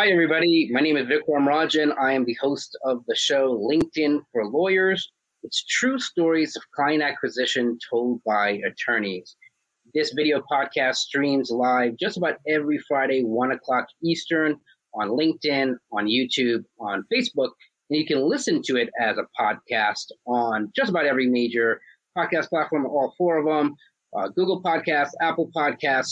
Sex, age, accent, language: male, 30-49, American, English